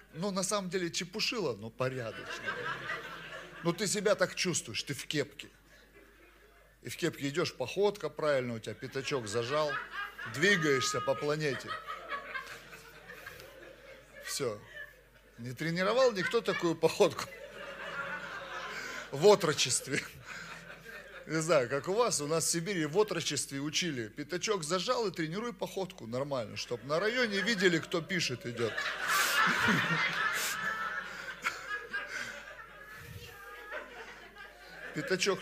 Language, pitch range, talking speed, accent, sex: Russian, 135-195 Hz, 105 wpm, native, male